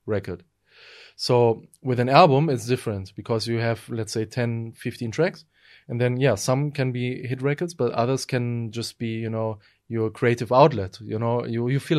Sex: male